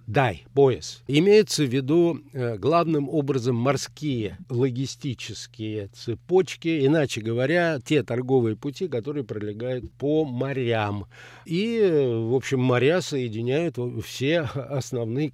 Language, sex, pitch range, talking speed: Russian, male, 120-150 Hz, 100 wpm